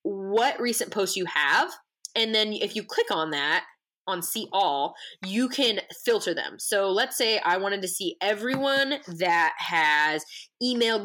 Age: 20-39